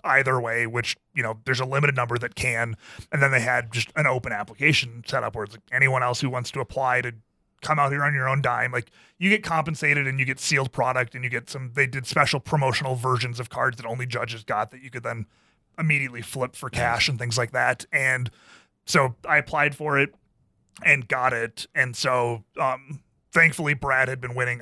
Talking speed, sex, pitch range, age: 220 wpm, male, 120-140 Hz, 30-49